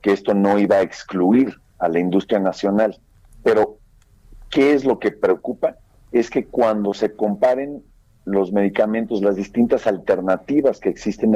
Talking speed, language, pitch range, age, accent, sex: 150 wpm, Spanish, 100-135 Hz, 50-69, Mexican, male